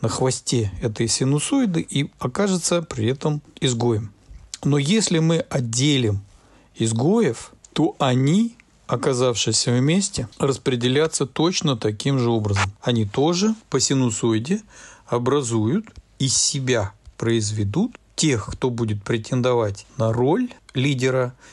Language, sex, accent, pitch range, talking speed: Russian, male, native, 115-160 Hz, 105 wpm